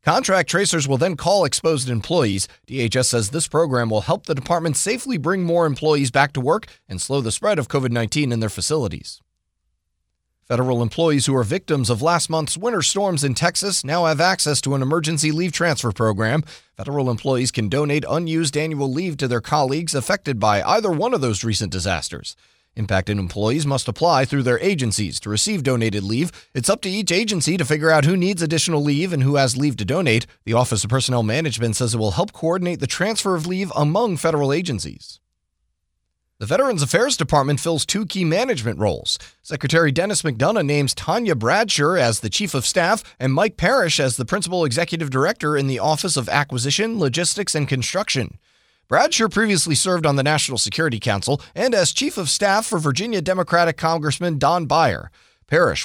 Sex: male